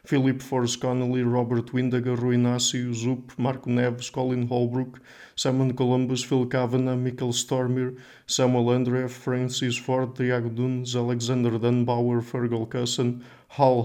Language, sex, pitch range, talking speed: English, male, 120-125 Hz, 120 wpm